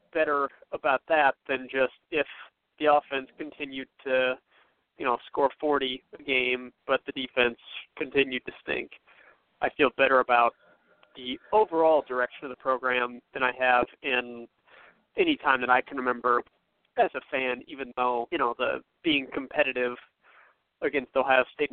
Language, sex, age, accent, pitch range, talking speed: English, male, 30-49, American, 125-150 Hz, 150 wpm